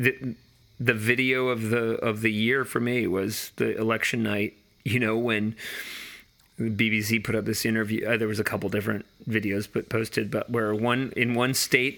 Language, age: English, 30-49